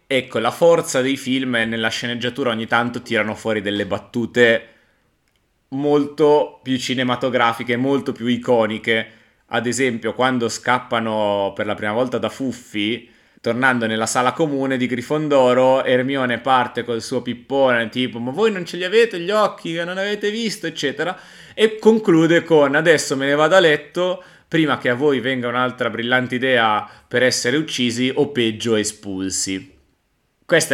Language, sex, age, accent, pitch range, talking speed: Italian, male, 30-49, native, 110-140 Hz, 155 wpm